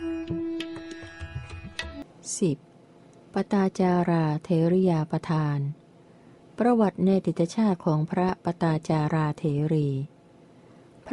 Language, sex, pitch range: Thai, female, 155-185 Hz